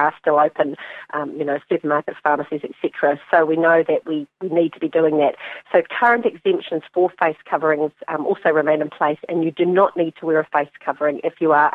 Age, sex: 40-59, female